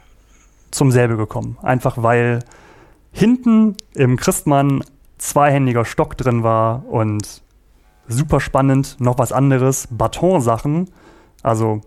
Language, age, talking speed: German, 30-49, 105 wpm